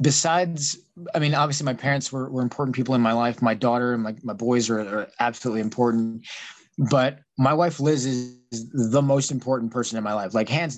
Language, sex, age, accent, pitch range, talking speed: English, male, 20-39, American, 125-155 Hz, 210 wpm